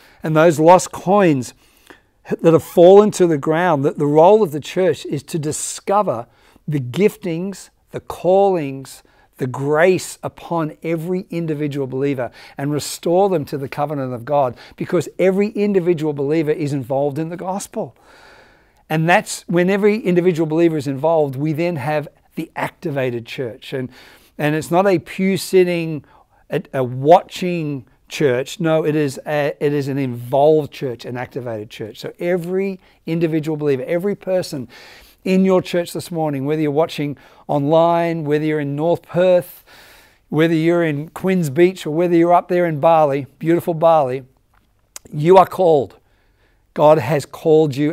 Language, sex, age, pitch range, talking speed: English, male, 50-69, 140-175 Hz, 155 wpm